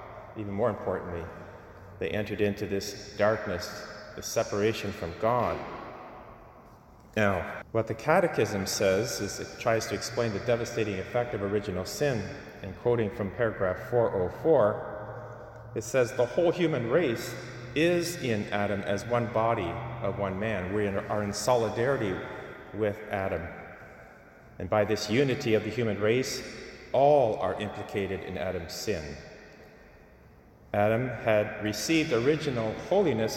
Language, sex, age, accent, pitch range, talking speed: English, male, 30-49, American, 100-120 Hz, 130 wpm